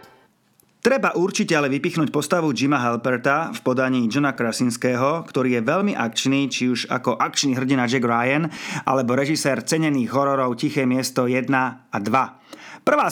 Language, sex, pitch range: Slovak, male, 125-150 Hz